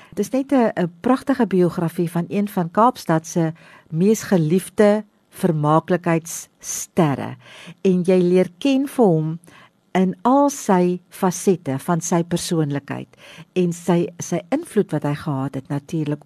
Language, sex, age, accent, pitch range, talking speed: English, female, 50-69, Austrian, 155-205 Hz, 135 wpm